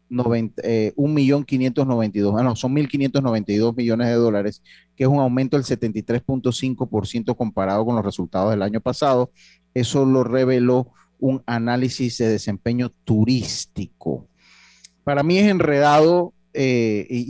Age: 30-49